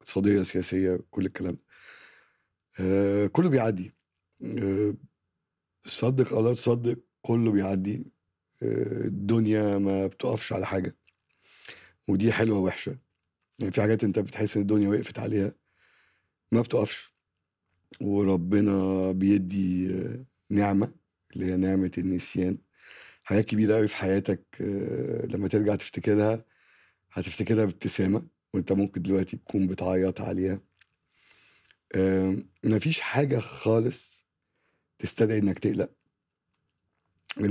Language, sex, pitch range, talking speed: Arabic, male, 95-105 Hz, 100 wpm